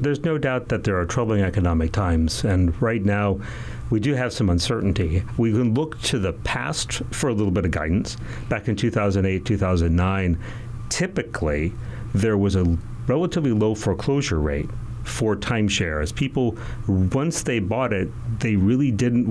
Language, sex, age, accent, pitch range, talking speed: English, male, 40-59, American, 90-120 Hz, 160 wpm